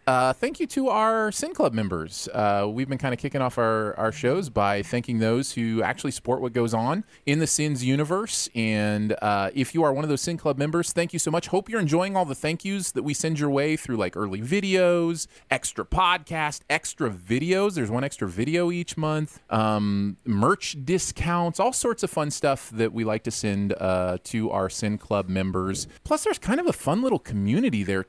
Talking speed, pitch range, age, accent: 215 wpm, 110-155 Hz, 30-49, American